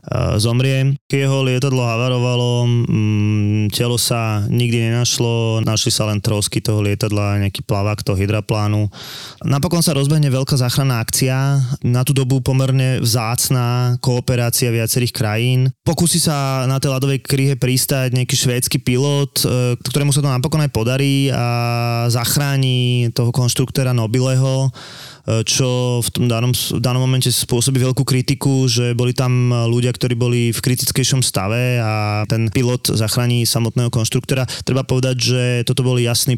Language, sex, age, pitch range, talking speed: Slovak, male, 20-39, 115-130 Hz, 135 wpm